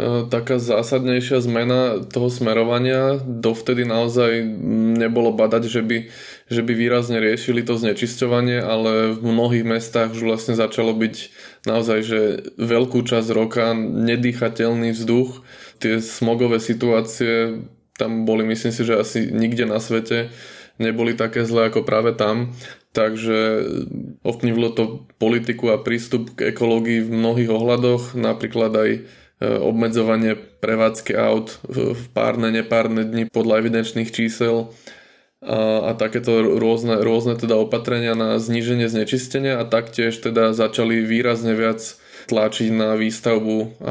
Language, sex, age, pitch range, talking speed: Slovak, male, 20-39, 110-120 Hz, 125 wpm